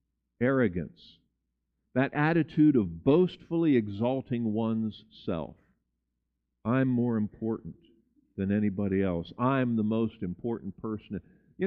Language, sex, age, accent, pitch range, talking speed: English, male, 50-69, American, 85-130 Hz, 105 wpm